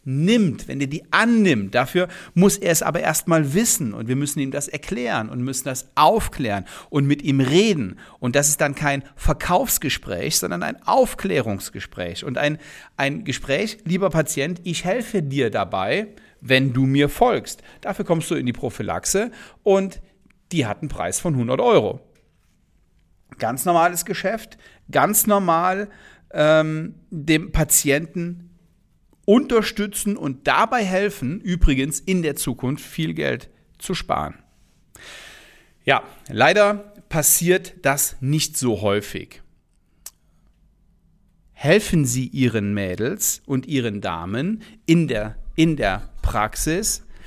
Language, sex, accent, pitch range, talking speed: German, male, German, 130-180 Hz, 130 wpm